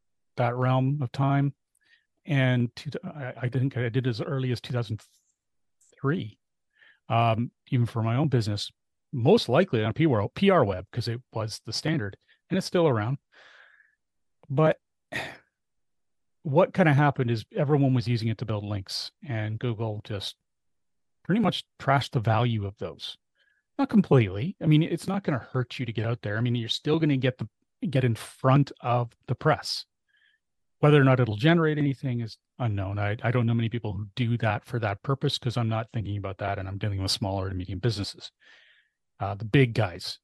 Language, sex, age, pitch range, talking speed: English, male, 40-59, 110-145 Hz, 190 wpm